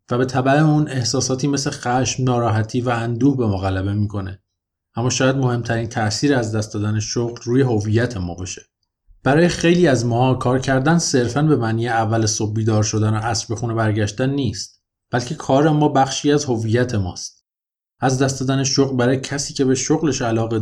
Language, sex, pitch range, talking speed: Persian, male, 105-135 Hz, 180 wpm